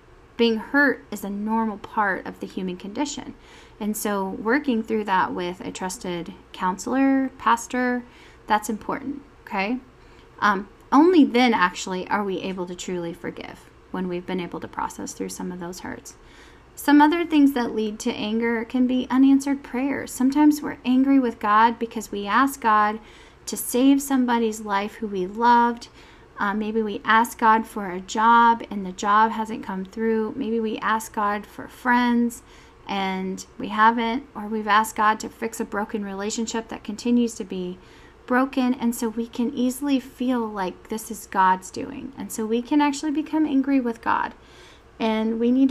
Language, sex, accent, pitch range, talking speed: English, female, American, 210-255 Hz, 170 wpm